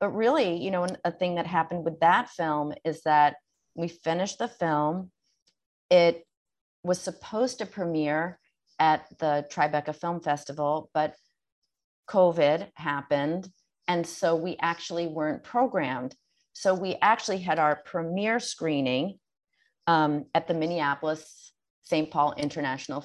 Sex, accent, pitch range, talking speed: female, American, 155-185 Hz, 130 wpm